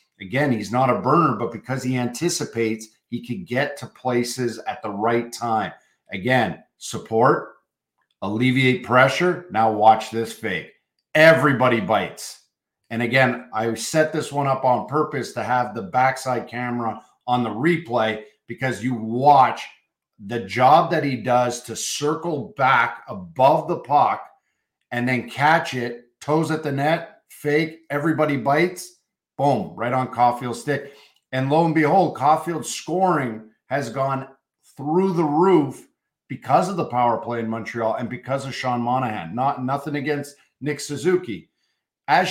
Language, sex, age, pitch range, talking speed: English, male, 50-69, 120-150 Hz, 145 wpm